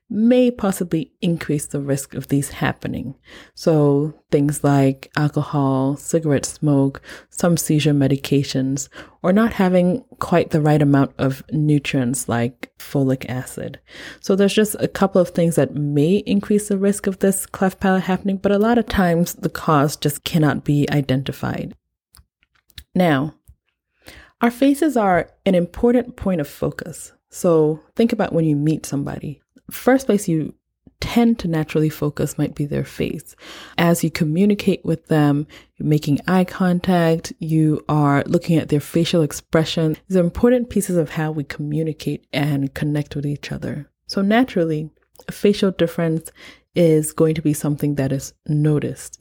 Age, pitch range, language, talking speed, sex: 20-39, 145-185 Hz, English, 155 wpm, female